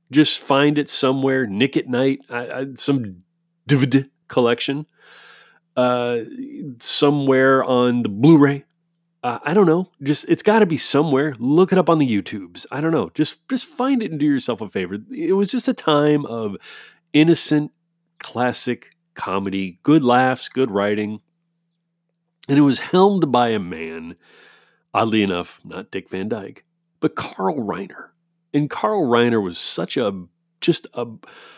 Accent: American